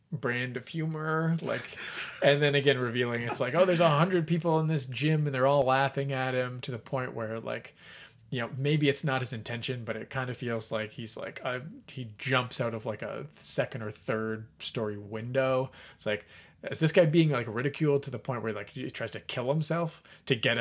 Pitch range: 115-145 Hz